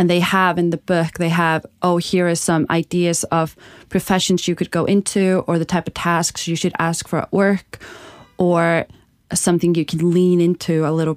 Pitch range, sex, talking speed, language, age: 155-175 Hz, female, 205 wpm, English, 20-39